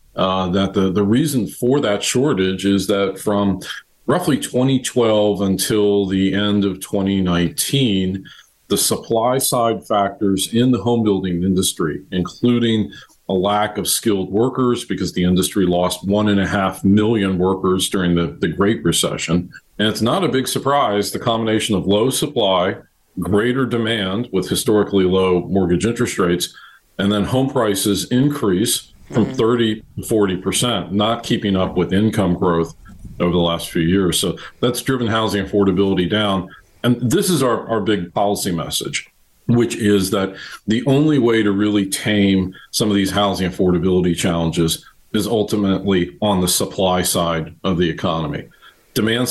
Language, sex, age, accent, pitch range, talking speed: English, male, 40-59, American, 95-110 Hz, 150 wpm